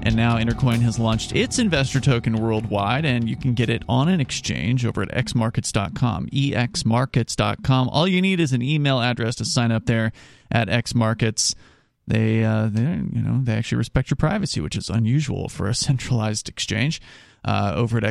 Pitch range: 115-150 Hz